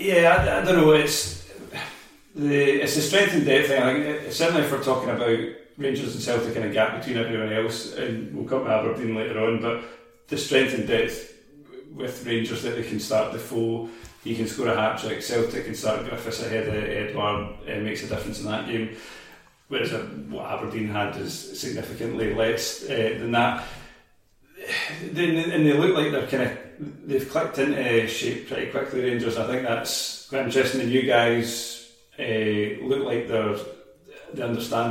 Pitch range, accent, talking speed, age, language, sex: 110-130 Hz, British, 180 wpm, 40-59, English, male